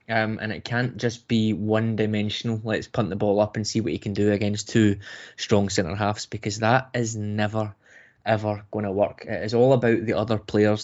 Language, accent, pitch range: English, British, 110-125 Hz